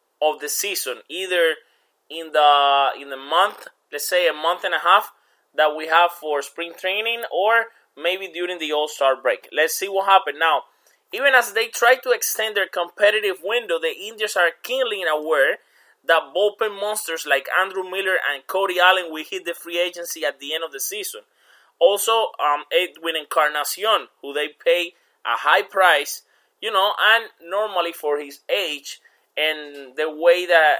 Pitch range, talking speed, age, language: 150-205 Hz, 170 wpm, 20-39, English